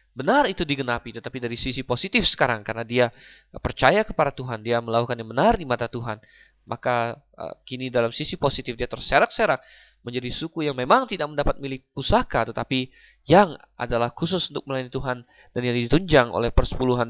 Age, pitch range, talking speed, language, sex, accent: 20-39, 120-145 Hz, 170 wpm, Indonesian, male, native